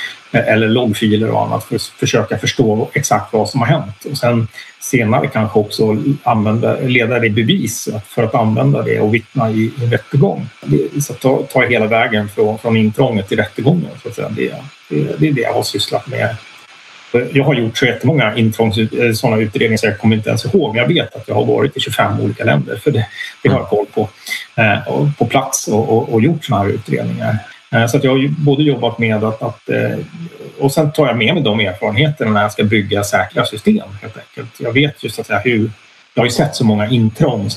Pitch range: 110-135 Hz